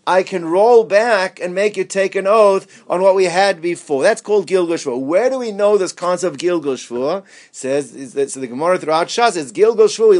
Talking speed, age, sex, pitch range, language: 195 wpm, 50-69, male, 170-220 Hz, English